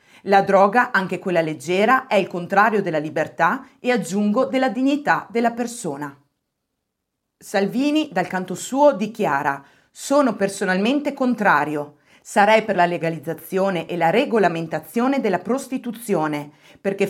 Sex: female